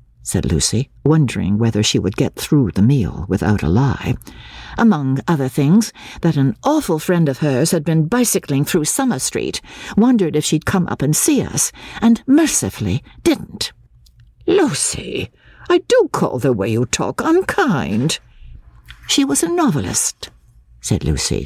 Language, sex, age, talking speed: English, female, 60-79, 150 wpm